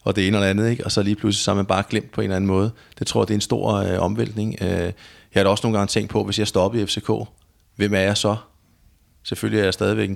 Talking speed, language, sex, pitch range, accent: 295 wpm, Danish, male, 95-110 Hz, native